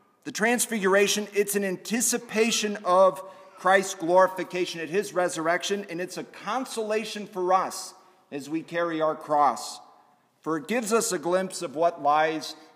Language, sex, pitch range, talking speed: English, male, 145-190 Hz, 145 wpm